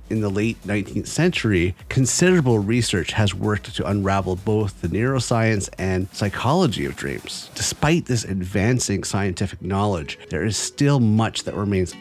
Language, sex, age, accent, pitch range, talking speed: English, male, 30-49, American, 95-135 Hz, 145 wpm